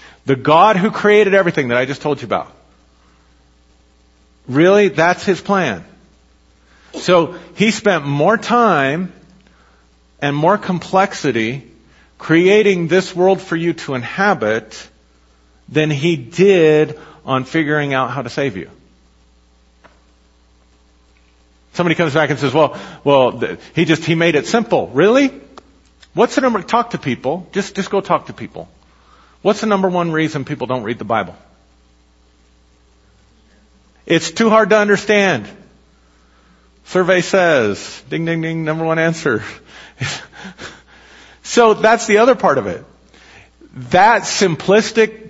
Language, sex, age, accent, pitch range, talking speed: English, male, 50-69, American, 115-180 Hz, 130 wpm